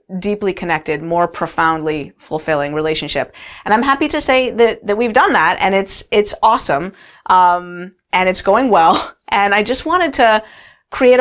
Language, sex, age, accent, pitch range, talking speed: English, female, 30-49, American, 160-190 Hz, 165 wpm